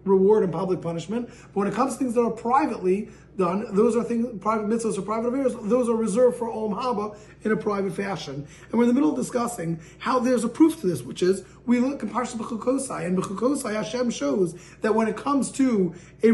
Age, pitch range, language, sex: 30-49, 185-250 Hz, English, male